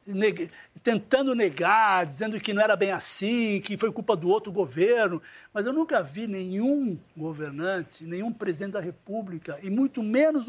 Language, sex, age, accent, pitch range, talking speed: Portuguese, male, 60-79, Brazilian, 180-235 Hz, 155 wpm